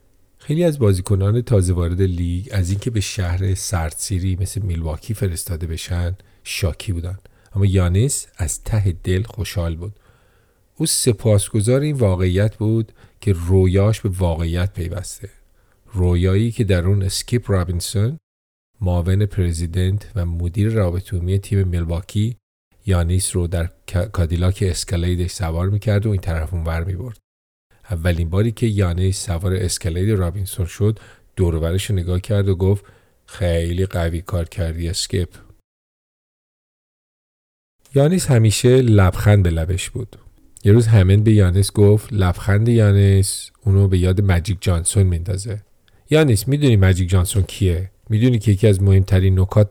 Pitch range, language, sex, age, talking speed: 90-105 Hz, English, male, 40-59, 135 wpm